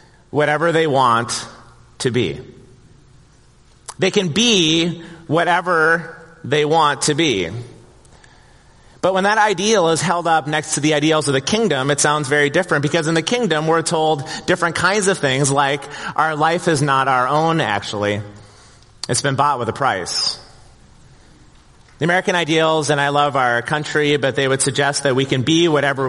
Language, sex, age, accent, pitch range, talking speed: English, male, 30-49, American, 120-155 Hz, 165 wpm